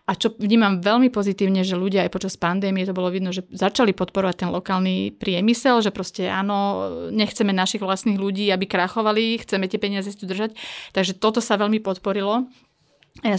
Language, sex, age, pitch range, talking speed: Slovak, female, 30-49, 185-210 Hz, 180 wpm